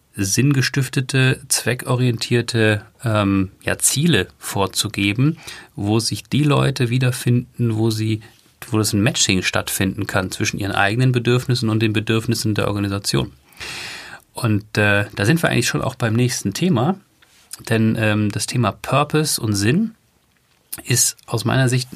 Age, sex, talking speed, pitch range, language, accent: 40-59, male, 130 wpm, 105-125 Hz, German, German